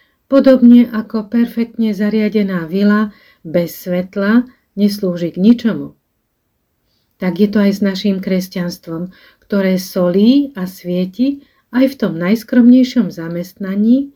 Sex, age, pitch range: female, 40-59, 185-235 Hz